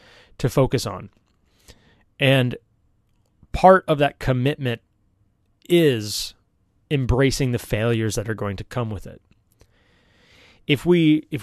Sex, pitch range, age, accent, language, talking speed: male, 105-135 Hz, 30-49, American, English, 115 wpm